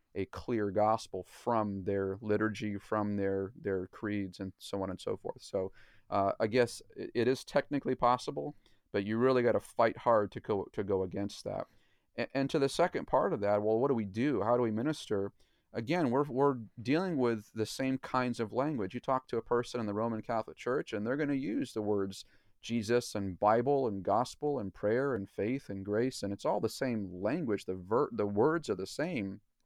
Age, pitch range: 40-59, 100-130 Hz